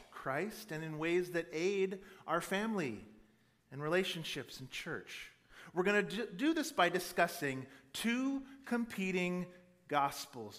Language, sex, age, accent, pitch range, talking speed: English, male, 40-59, American, 140-210 Hz, 125 wpm